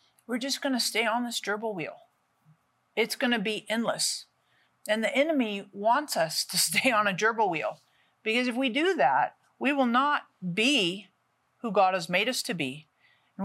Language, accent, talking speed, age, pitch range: English, American, 180 wpm, 50-69, 185-255 Hz